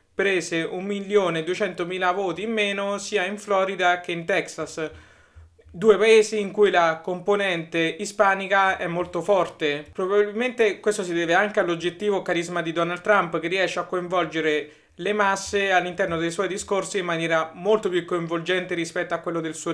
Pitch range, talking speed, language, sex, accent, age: 170-205 Hz, 155 wpm, Italian, male, native, 30-49